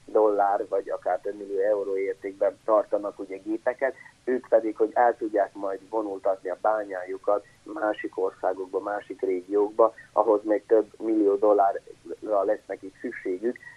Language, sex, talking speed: Hungarian, male, 135 wpm